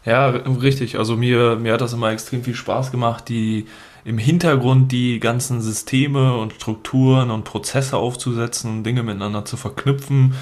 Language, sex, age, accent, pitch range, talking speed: German, male, 20-39, German, 110-130 Hz, 155 wpm